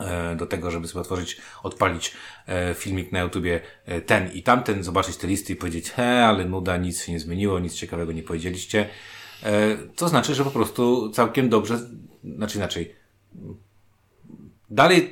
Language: Polish